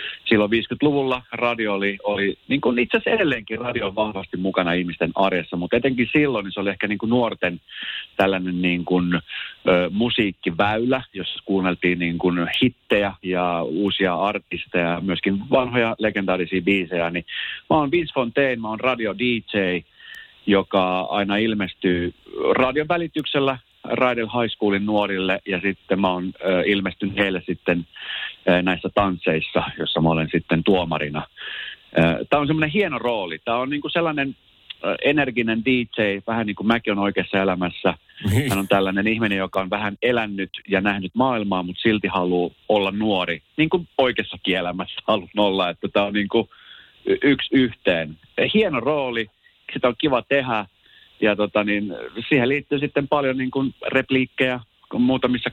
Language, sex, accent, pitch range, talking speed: Finnish, male, native, 95-120 Hz, 145 wpm